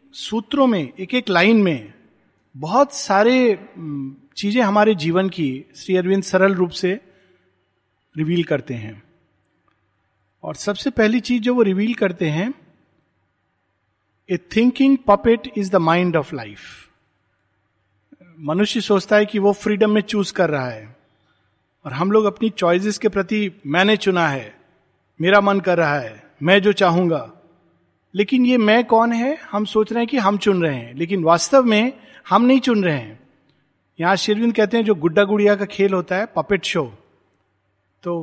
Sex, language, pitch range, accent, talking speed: male, Hindi, 145-215 Hz, native, 160 wpm